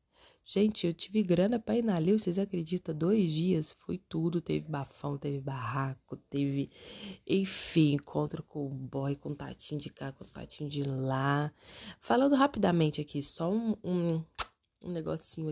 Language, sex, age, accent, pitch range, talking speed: Portuguese, female, 20-39, Brazilian, 150-175 Hz, 155 wpm